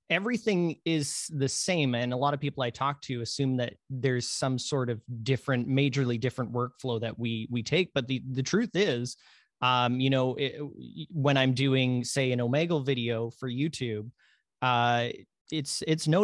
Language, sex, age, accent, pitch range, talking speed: English, male, 30-49, American, 120-135 Hz, 175 wpm